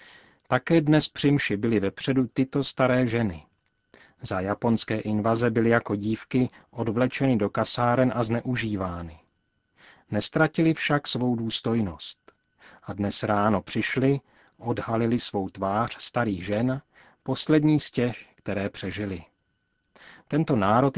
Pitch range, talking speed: 100-130 Hz, 115 wpm